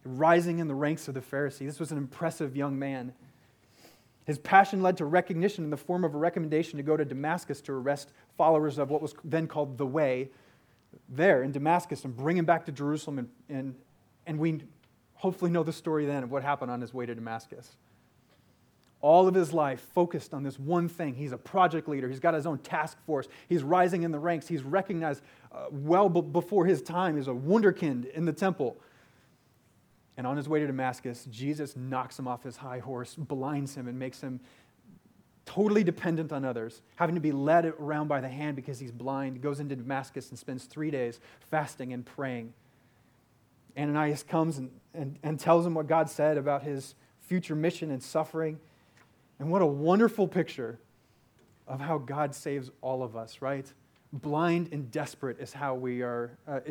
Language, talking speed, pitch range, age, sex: English, 190 wpm, 130-160 Hz, 30-49, male